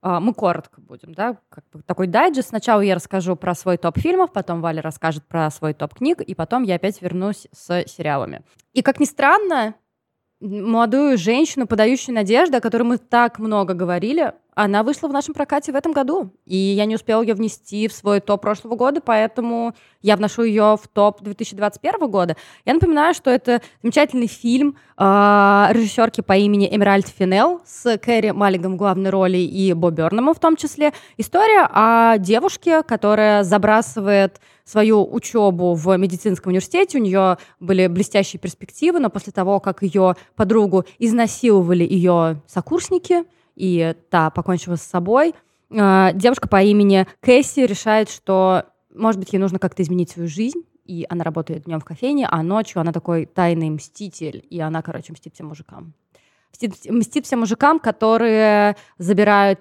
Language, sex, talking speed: Russian, female, 160 wpm